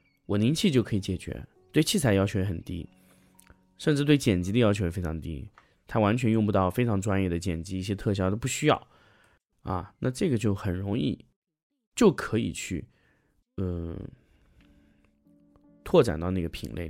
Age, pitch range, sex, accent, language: 20-39, 90-120 Hz, male, native, Chinese